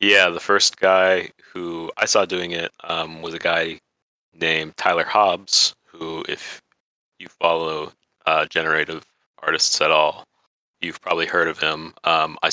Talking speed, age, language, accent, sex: 155 wpm, 30-49, English, American, male